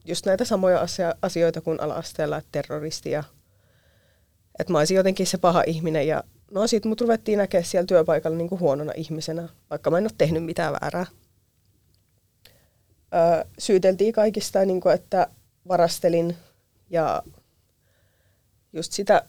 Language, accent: Finnish, native